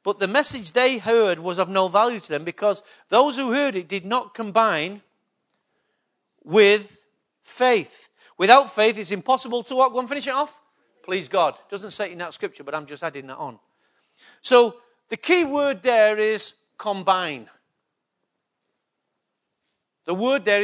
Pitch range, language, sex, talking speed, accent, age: 180-230 Hz, English, male, 165 wpm, British, 40-59